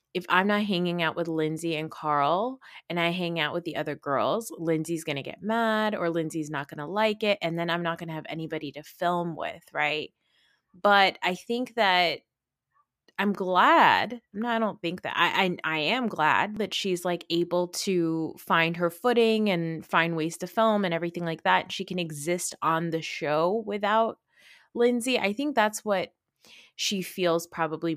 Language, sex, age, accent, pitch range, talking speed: English, female, 20-39, American, 160-205 Hz, 190 wpm